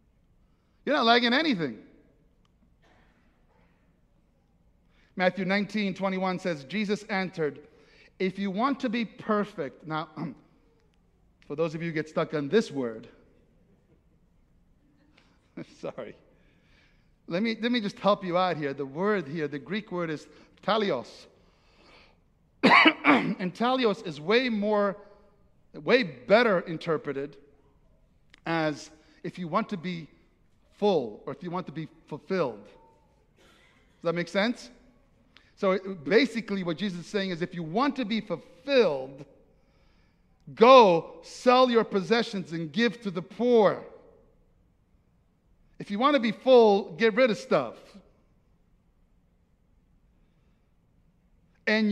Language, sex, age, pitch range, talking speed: English, male, 50-69, 165-225 Hz, 120 wpm